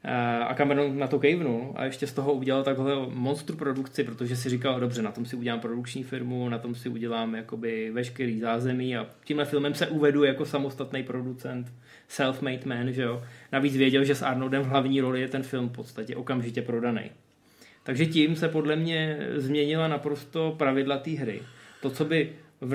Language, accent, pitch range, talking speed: Czech, native, 125-145 Hz, 185 wpm